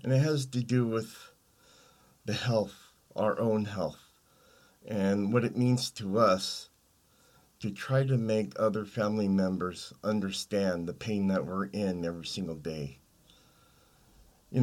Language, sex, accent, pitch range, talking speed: English, male, American, 95-125 Hz, 140 wpm